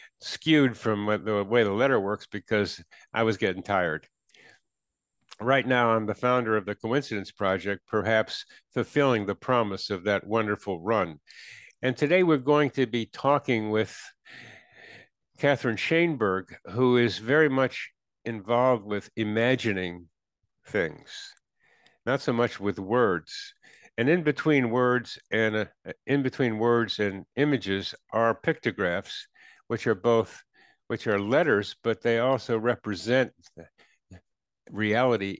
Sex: male